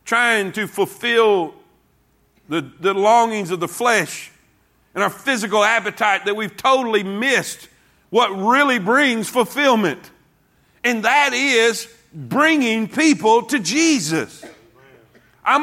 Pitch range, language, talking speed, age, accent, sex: 220-265 Hz, English, 110 wpm, 50-69, American, male